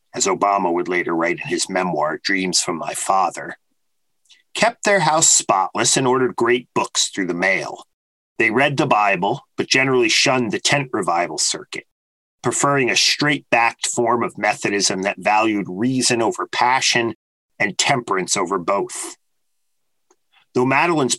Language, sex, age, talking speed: English, male, 40-59, 145 wpm